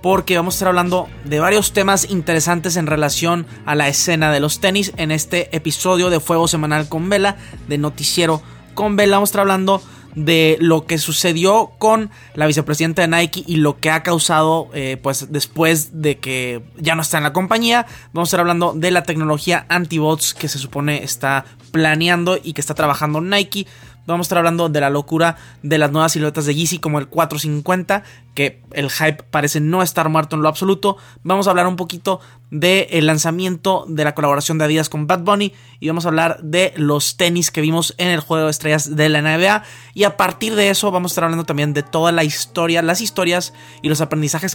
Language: Spanish